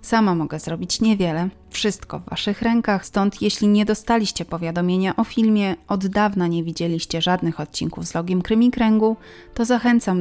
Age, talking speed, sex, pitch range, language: 30-49, 155 wpm, female, 170-215 Hz, Polish